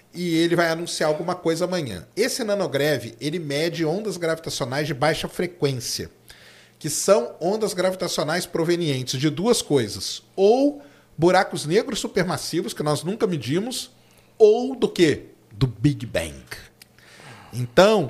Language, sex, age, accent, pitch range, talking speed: Portuguese, male, 40-59, Brazilian, 150-200 Hz, 130 wpm